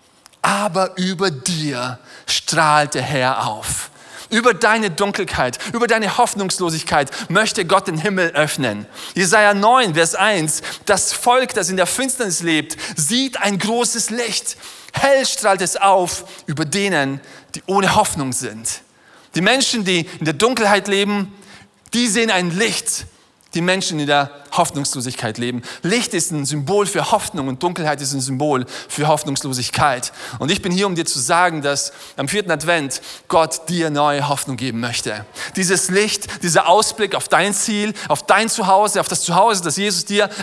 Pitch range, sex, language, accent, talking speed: 160-215 Hz, male, German, German, 160 wpm